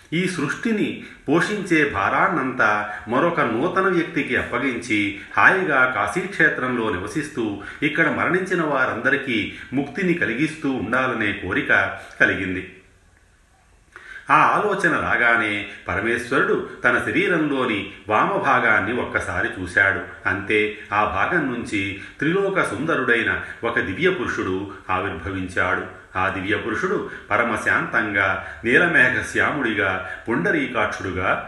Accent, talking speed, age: native, 80 wpm, 40-59